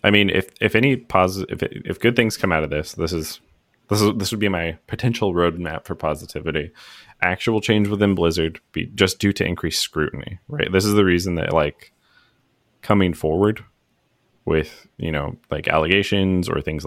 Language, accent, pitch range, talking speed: English, American, 80-110 Hz, 185 wpm